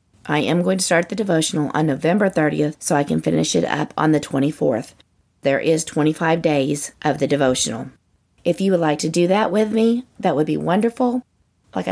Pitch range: 150-200 Hz